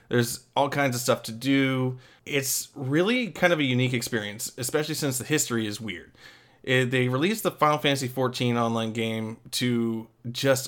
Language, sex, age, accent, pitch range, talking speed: English, male, 20-39, American, 115-135 Hz, 170 wpm